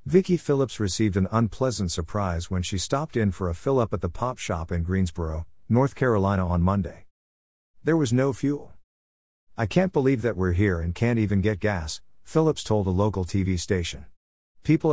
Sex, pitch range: male, 90-110 Hz